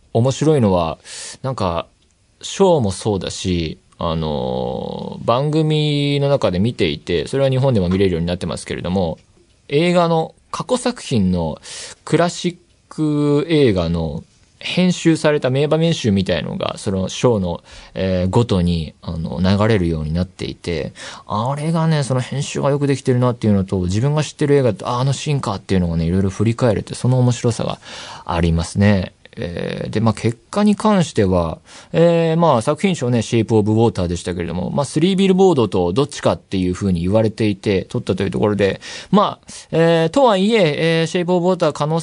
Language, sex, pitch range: Japanese, male, 95-155 Hz